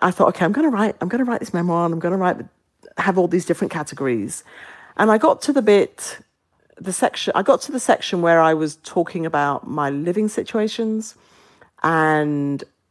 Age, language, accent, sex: 50-69, English, British, female